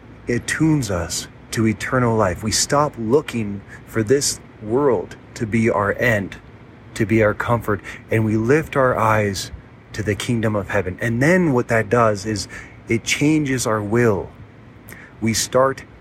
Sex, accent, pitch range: male, American, 110-125 Hz